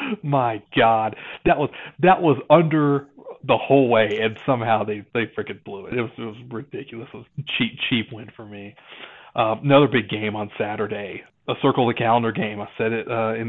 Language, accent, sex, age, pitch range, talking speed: English, American, male, 40-59, 115-140 Hz, 205 wpm